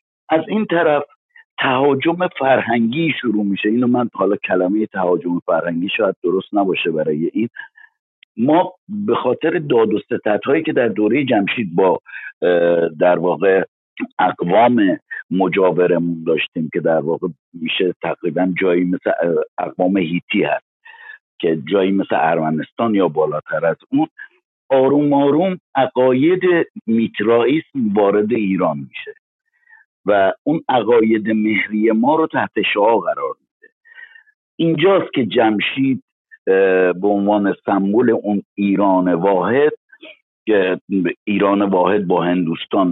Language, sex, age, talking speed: Persian, male, 60-79, 115 wpm